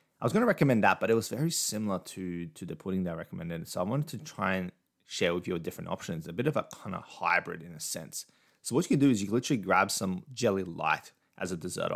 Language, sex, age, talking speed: English, male, 30-49, 280 wpm